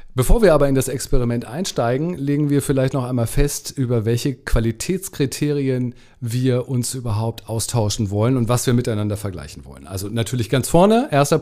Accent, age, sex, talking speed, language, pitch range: German, 40-59, male, 170 wpm, German, 110-160 Hz